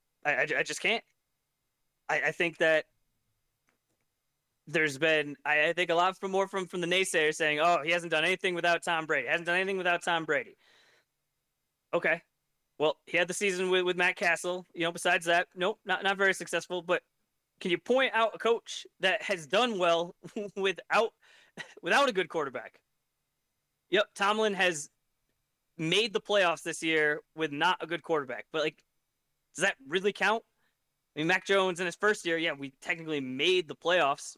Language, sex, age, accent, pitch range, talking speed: English, male, 20-39, American, 155-200 Hz, 185 wpm